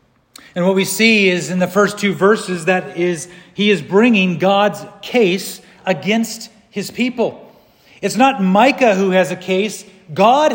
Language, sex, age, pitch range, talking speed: English, male, 40-59, 180-220 Hz, 160 wpm